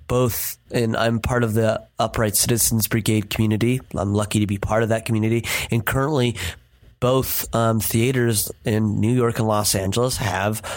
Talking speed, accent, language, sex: 165 wpm, American, English, male